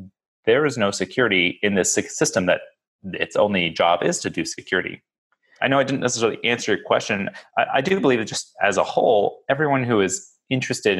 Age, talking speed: 30-49, 195 wpm